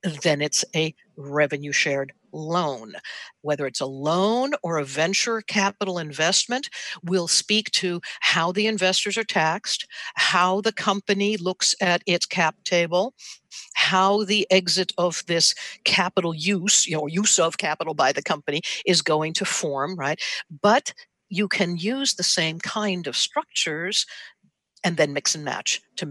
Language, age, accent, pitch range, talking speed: English, 60-79, American, 150-195 Hz, 150 wpm